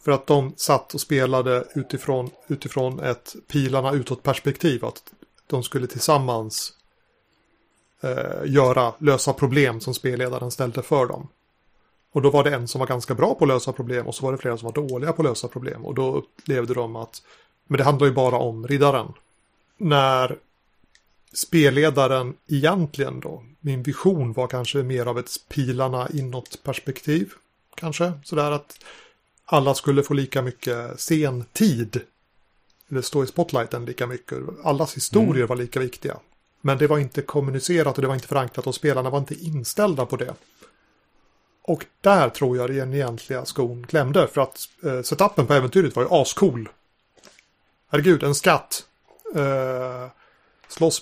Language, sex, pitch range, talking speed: Swedish, male, 125-145 Hz, 160 wpm